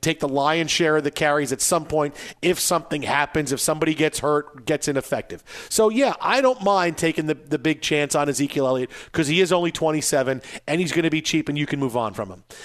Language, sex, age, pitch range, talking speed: English, male, 40-59, 150-195 Hz, 235 wpm